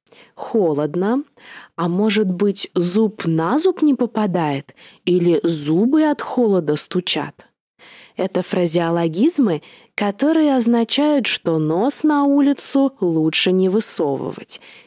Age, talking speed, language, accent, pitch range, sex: 20-39, 100 wpm, Russian, native, 180-245 Hz, female